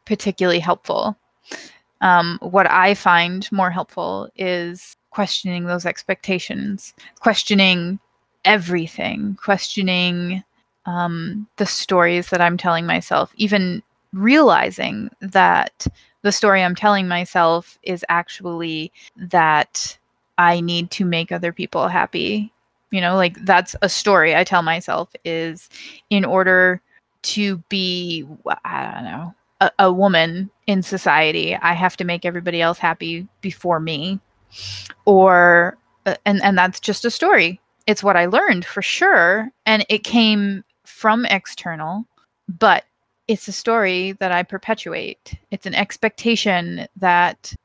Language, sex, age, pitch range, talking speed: English, female, 20-39, 175-205 Hz, 125 wpm